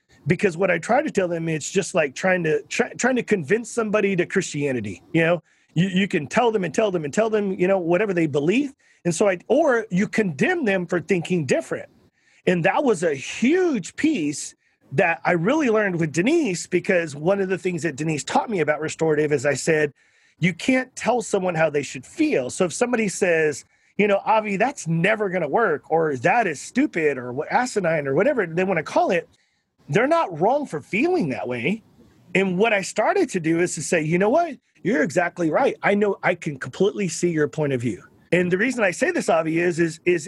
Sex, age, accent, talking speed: male, 30-49, American, 220 wpm